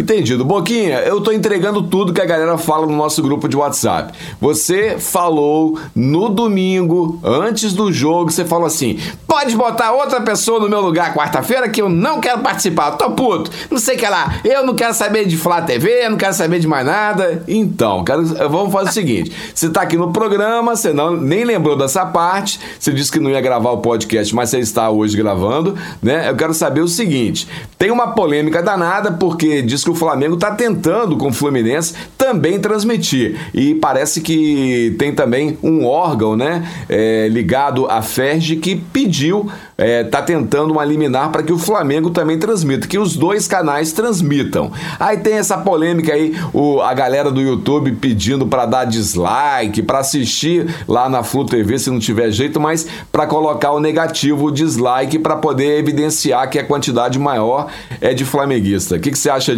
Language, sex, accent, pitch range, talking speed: Portuguese, male, Brazilian, 140-195 Hz, 190 wpm